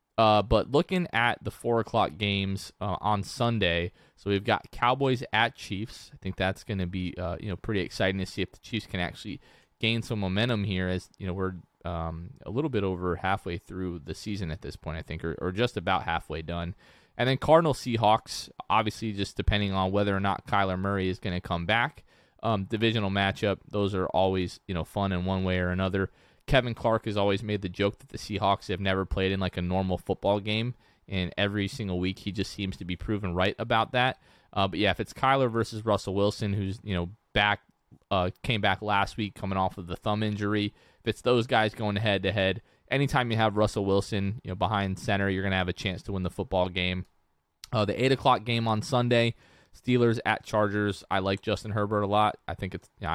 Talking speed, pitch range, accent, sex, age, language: 225 wpm, 95-110 Hz, American, male, 20-39, English